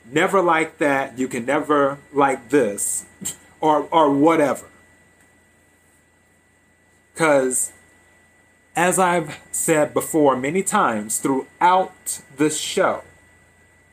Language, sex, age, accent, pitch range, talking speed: English, male, 30-49, American, 95-150 Hz, 90 wpm